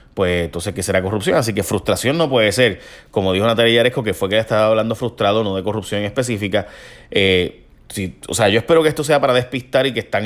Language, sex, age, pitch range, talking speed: Spanish, male, 30-49, 100-130 Hz, 235 wpm